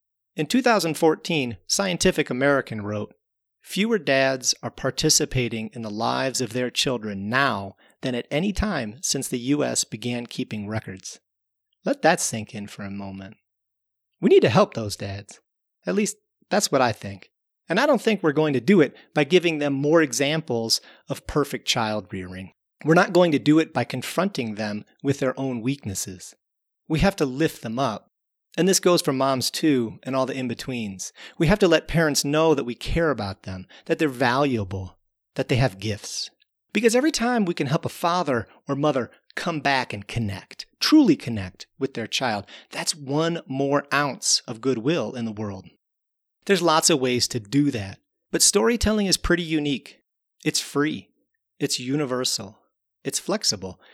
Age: 30-49